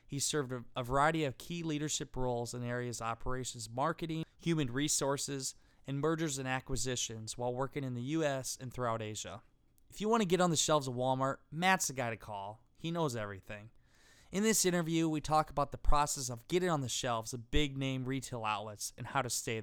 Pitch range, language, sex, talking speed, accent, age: 120-155 Hz, English, male, 200 wpm, American, 20-39